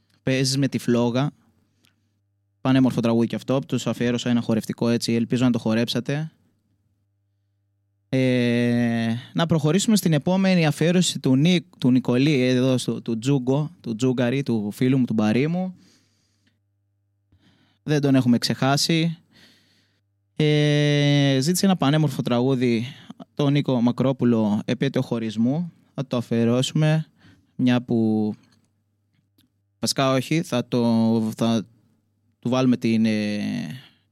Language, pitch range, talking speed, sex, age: Greek, 110-140 Hz, 105 wpm, male, 20-39